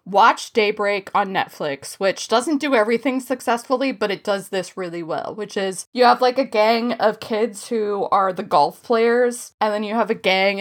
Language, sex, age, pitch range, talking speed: English, female, 20-39, 195-255 Hz, 200 wpm